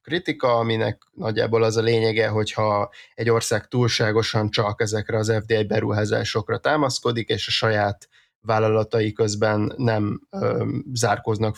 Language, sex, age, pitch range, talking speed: Hungarian, male, 20-39, 105-115 Hz, 120 wpm